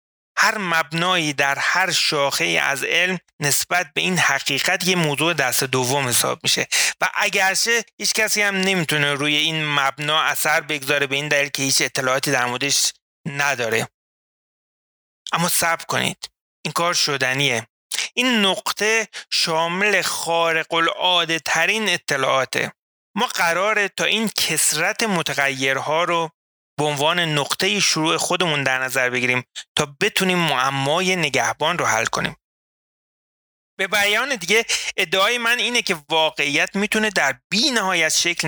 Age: 30-49